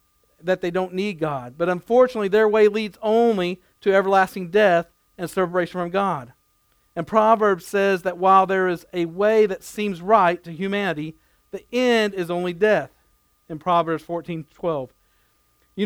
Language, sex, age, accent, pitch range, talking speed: English, male, 50-69, American, 175-210 Hz, 160 wpm